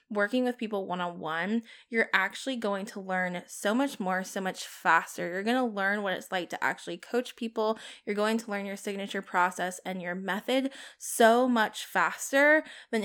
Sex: female